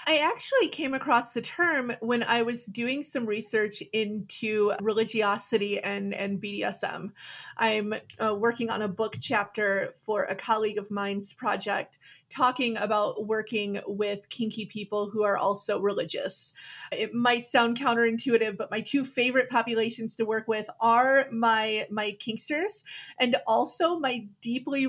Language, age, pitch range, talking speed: English, 30-49, 215-245 Hz, 145 wpm